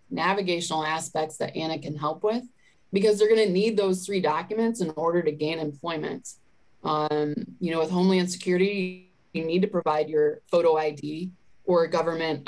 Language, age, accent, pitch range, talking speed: English, 20-39, American, 155-180 Hz, 175 wpm